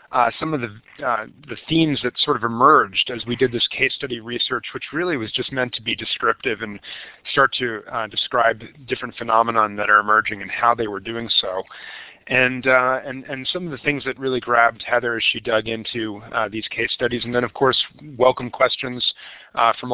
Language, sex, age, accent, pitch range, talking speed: English, male, 30-49, American, 115-140 Hz, 210 wpm